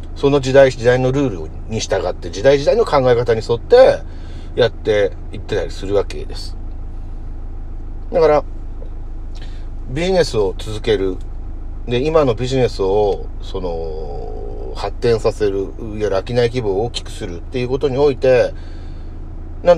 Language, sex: Japanese, male